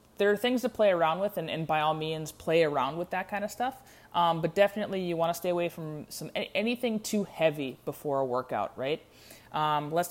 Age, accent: 20-39, American